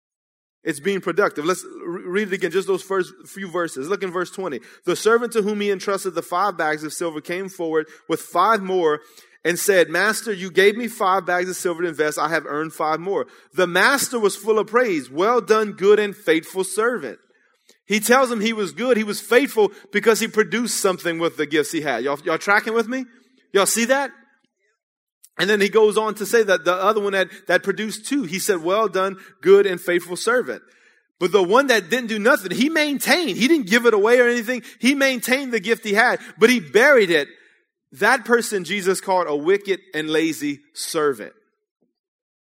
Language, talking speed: English, 205 wpm